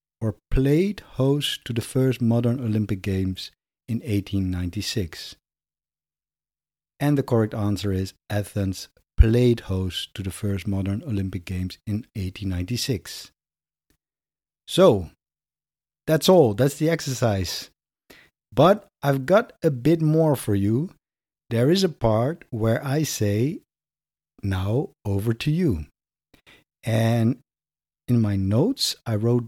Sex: male